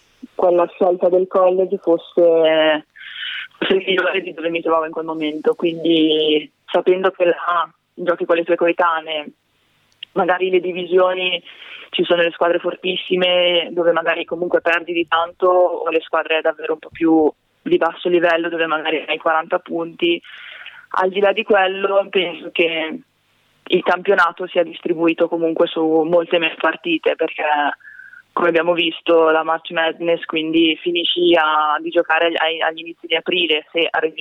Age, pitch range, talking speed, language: 20-39, 160-180 Hz, 150 wpm, Italian